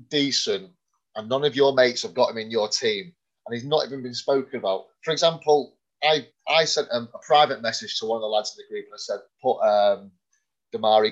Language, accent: English, British